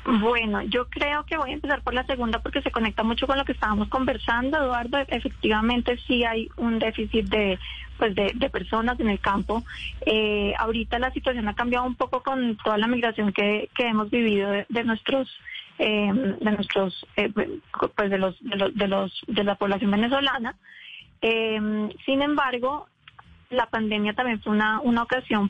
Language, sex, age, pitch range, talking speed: Spanish, female, 20-39, 200-235 Hz, 185 wpm